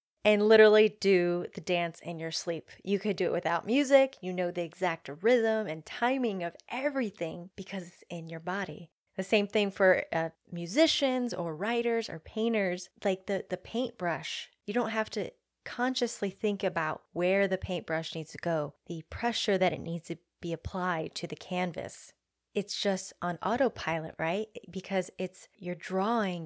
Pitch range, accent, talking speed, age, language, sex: 170-215 Hz, American, 170 wpm, 20-39, English, female